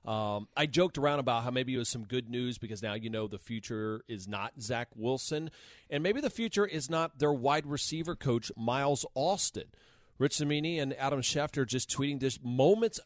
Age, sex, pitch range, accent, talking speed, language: 40-59, male, 110-145 Hz, American, 200 wpm, English